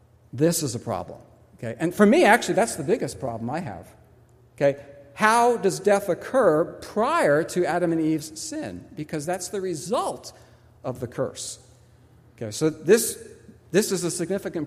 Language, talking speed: English, 165 wpm